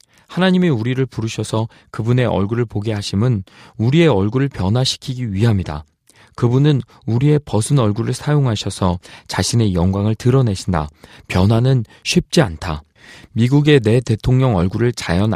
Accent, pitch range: native, 100-135 Hz